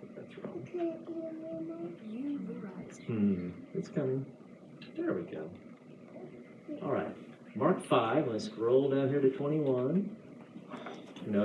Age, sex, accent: 40-59, male, American